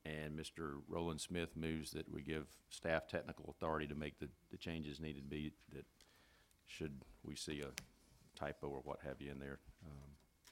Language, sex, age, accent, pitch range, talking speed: English, male, 50-69, American, 80-90 Hz, 175 wpm